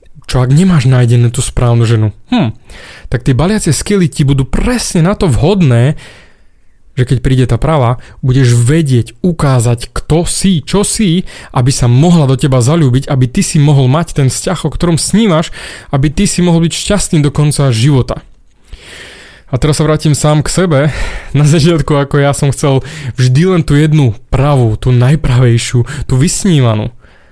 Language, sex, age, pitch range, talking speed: Slovak, male, 20-39, 120-150 Hz, 170 wpm